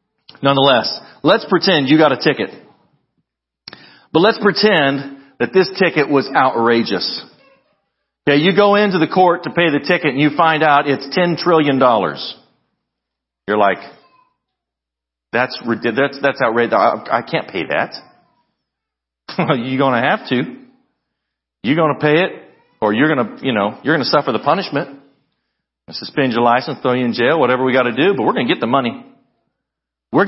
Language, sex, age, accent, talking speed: English, male, 40-59, American, 160 wpm